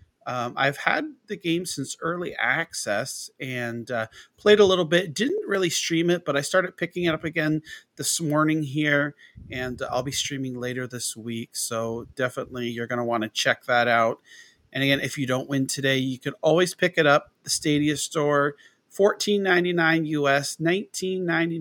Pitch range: 125-160 Hz